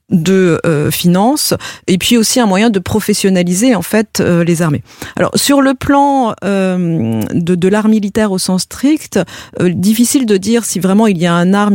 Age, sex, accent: 40-59, female, French